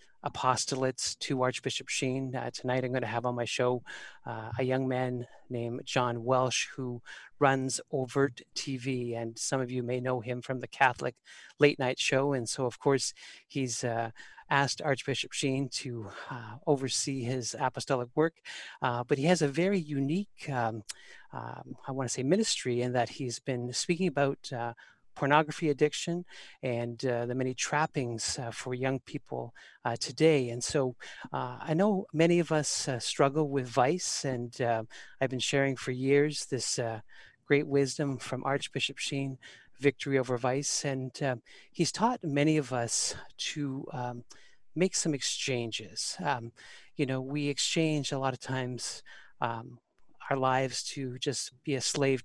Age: 40-59